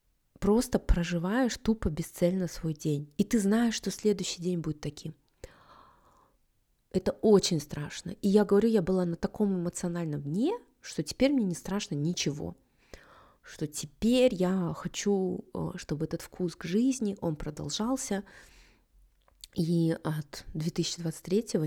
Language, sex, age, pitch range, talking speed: Russian, female, 20-39, 170-205 Hz, 125 wpm